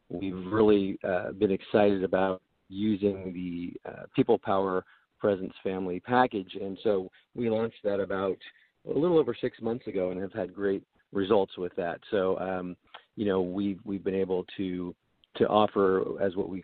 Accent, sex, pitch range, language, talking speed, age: American, male, 95-105 Hz, English, 170 wpm, 40-59